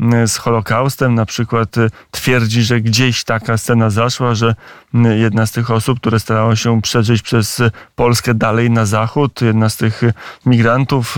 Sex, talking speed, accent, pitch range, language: male, 150 wpm, native, 120-135 Hz, Polish